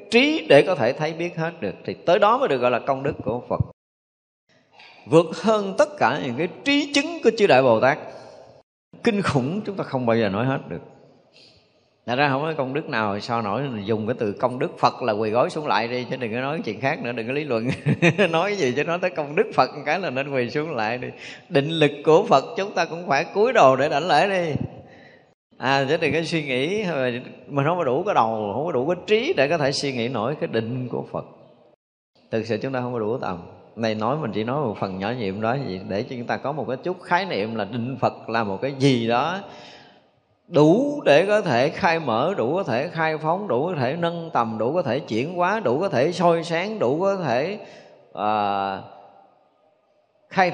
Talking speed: 235 wpm